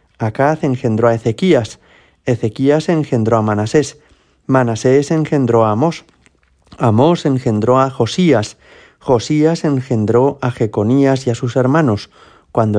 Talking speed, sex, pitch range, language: 115 wpm, male, 110-145 Hz, Spanish